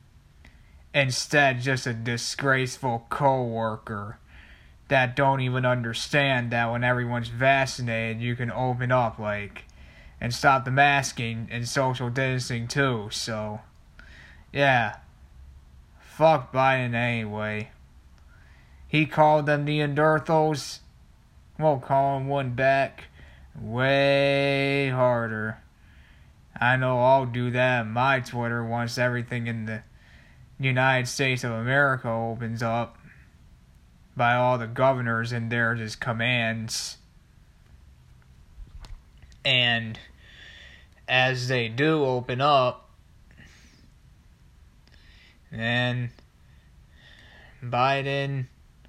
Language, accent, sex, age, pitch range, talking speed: English, American, male, 20-39, 110-130 Hz, 95 wpm